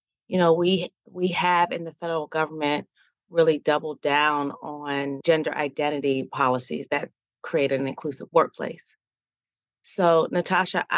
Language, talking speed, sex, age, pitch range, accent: English, 125 wpm, female, 30-49, 150-180 Hz, American